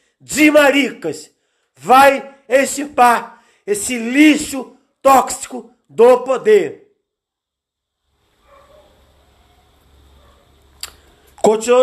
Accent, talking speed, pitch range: Brazilian, 50 wpm, 205-255 Hz